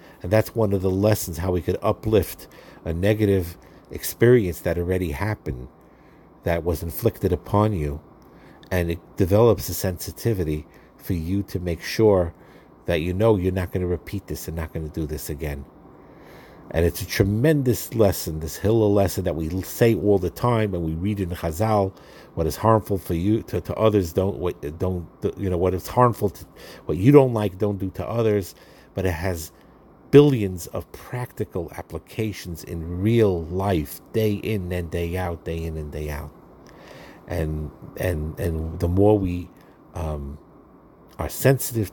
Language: English